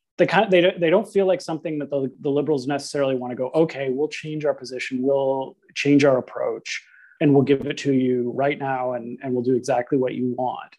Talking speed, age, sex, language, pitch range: 240 wpm, 30-49, male, English, 130-155 Hz